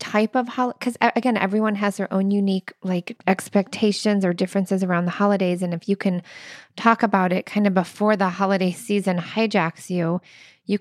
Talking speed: 180 wpm